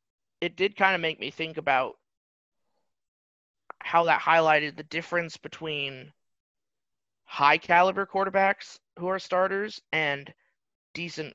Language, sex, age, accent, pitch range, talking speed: English, male, 30-49, American, 130-170 Hz, 115 wpm